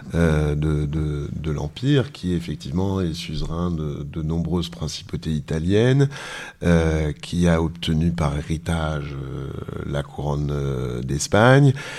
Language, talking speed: French, 120 wpm